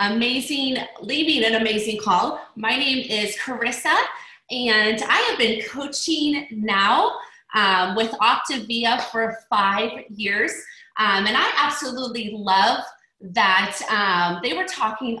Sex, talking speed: female, 120 wpm